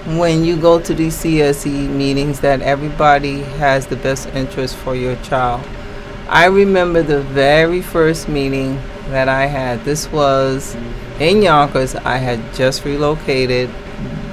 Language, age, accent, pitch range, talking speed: English, 30-49, American, 135-170 Hz, 140 wpm